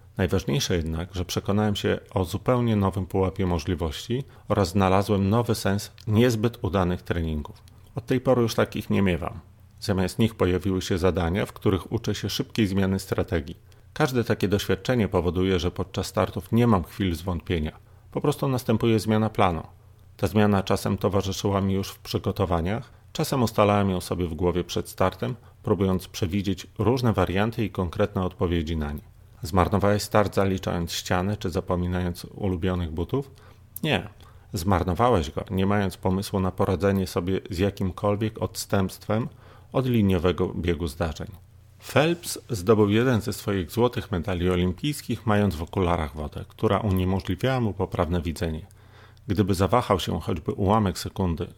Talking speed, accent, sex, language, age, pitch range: 145 wpm, native, male, Polish, 30-49, 95-110 Hz